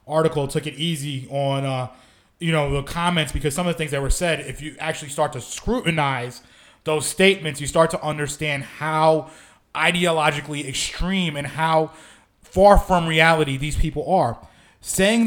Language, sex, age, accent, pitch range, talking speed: English, male, 20-39, American, 135-165 Hz, 165 wpm